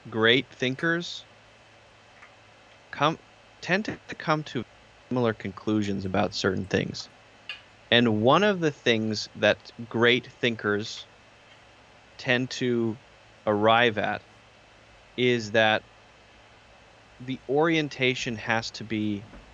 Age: 30-49